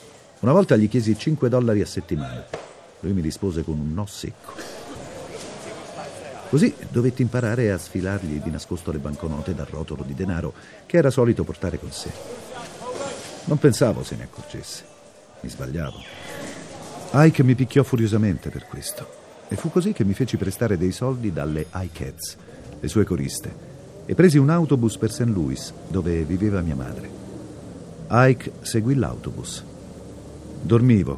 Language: Italian